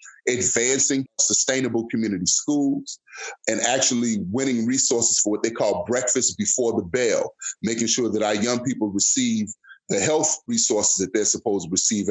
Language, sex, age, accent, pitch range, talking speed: English, male, 30-49, American, 115-155 Hz, 155 wpm